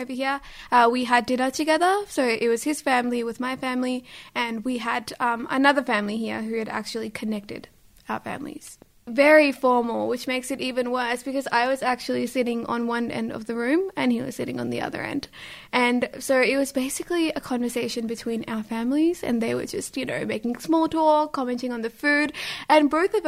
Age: 20-39